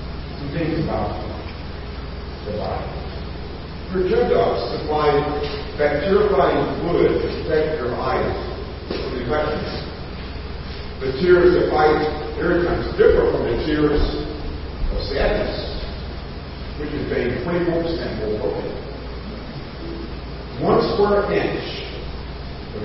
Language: English